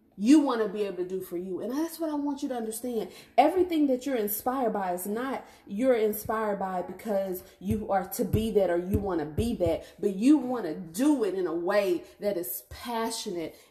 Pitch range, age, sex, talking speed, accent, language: 185-255 Hz, 30-49, female, 225 wpm, American, English